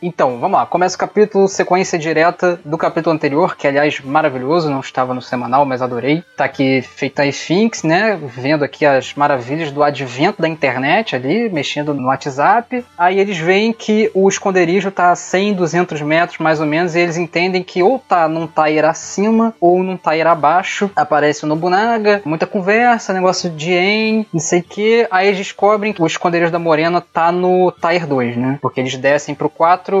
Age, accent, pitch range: 20-39, Brazilian, 145-185 Hz